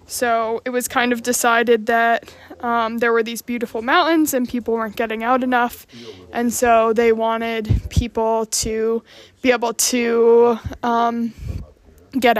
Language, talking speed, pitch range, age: English, 145 wpm, 225-255 Hz, 20-39